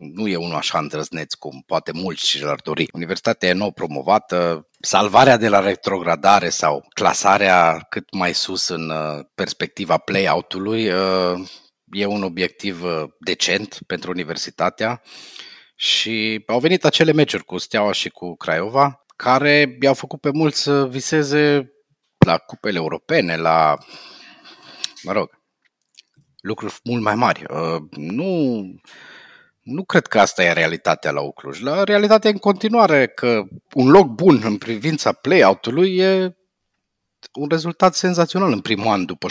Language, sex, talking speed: Romanian, male, 135 wpm